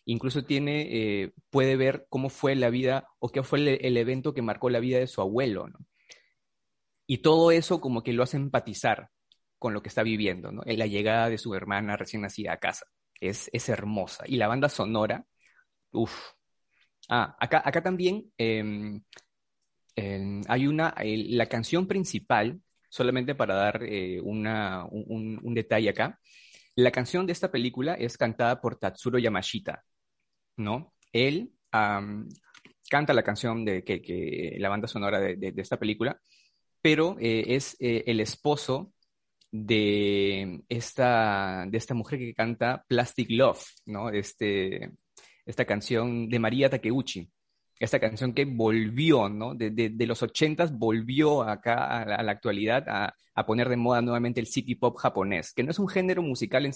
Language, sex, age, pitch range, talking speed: Spanish, male, 30-49, 110-130 Hz, 170 wpm